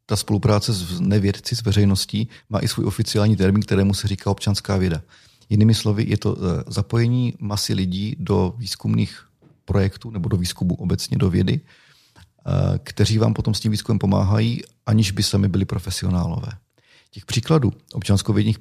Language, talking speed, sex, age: Czech, 150 wpm, male, 40-59